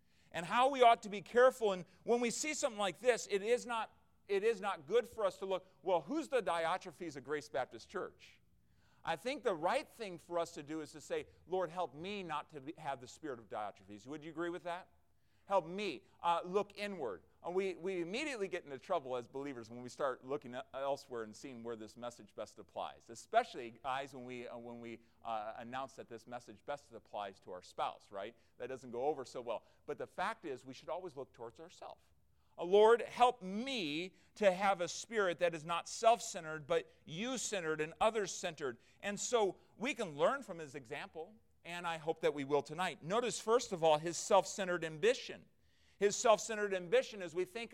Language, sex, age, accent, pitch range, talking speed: English, male, 40-59, American, 155-220 Hz, 205 wpm